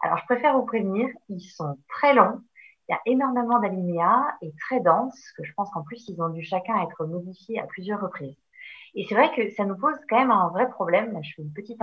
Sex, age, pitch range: female, 30-49, 165-235 Hz